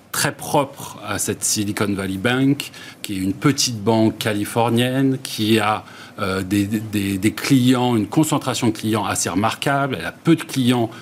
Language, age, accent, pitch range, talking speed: French, 40-59, French, 110-145 Hz, 170 wpm